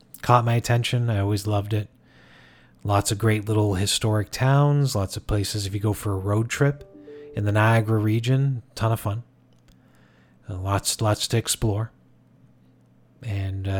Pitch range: 100-115 Hz